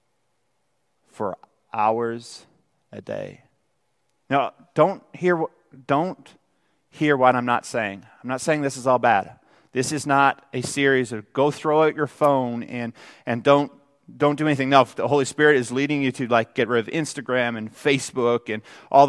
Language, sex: English, male